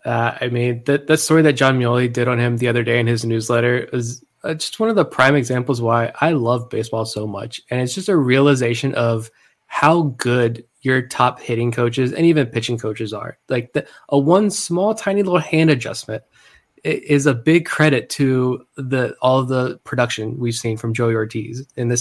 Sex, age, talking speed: male, 20-39, 205 wpm